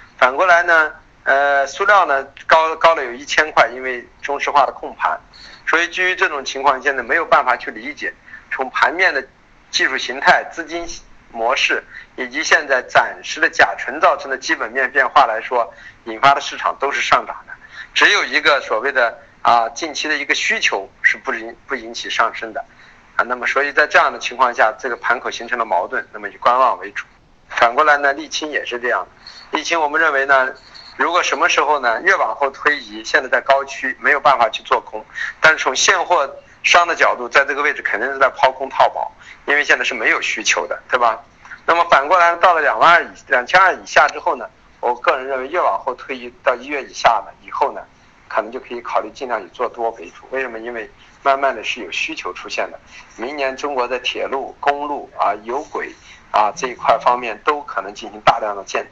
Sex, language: male, Chinese